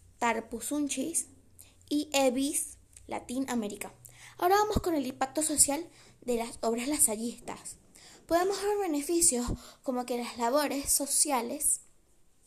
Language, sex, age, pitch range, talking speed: Spanish, female, 20-39, 230-305 Hz, 105 wpm